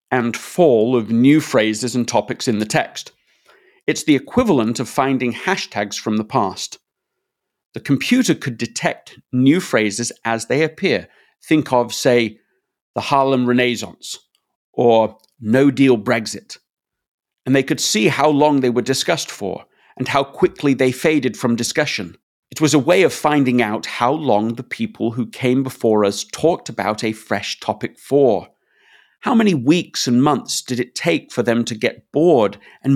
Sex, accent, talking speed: male, British, 165 wpm